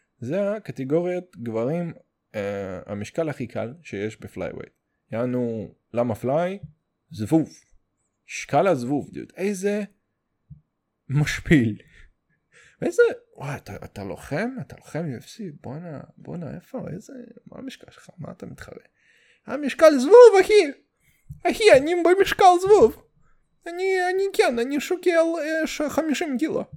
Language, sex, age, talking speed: English, male, 20-39, 105 wpm